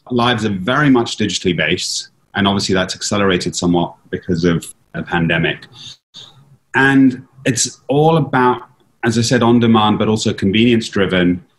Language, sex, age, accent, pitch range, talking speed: English, male, 30-49, British, 95-125 Hz, 135 wpm